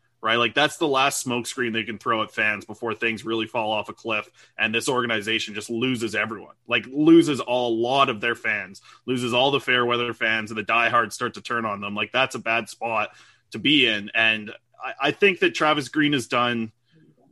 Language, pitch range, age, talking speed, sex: English, 115-135 Hz, 20-39, 215 wpm, male